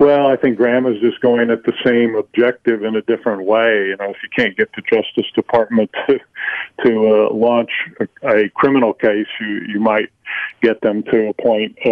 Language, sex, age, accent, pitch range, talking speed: English, male, 40-59, American, 110-125 Hz, 195 wpm